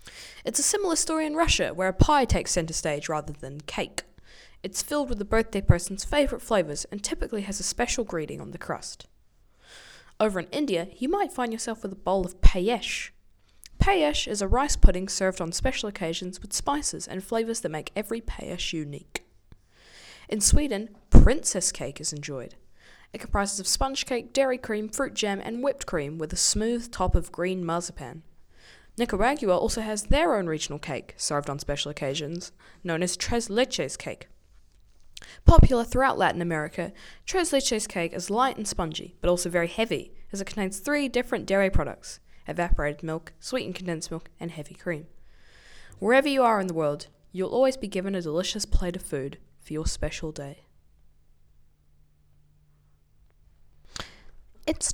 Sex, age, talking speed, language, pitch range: female, 10-29, 165 wpm, English, 150-230 Hz